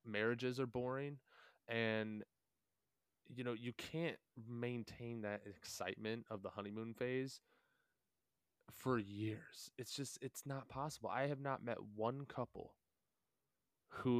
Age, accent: 20-39, American